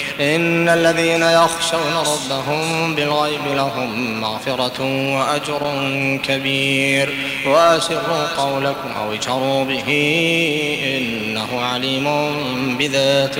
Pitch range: 135-165 Hz